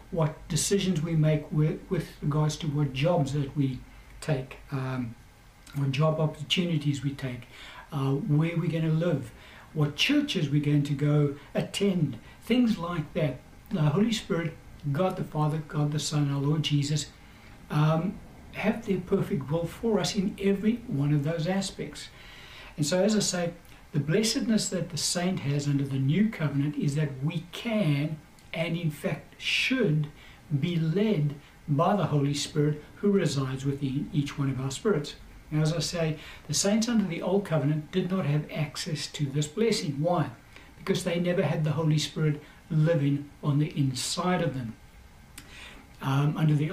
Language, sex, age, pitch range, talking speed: English, male, 60-79, 145-180 Hz, 170 wpm